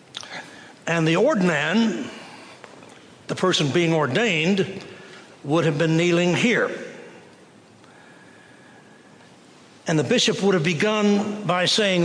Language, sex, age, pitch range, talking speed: English, male, 60-79, 160-200 Hz, 100 wpm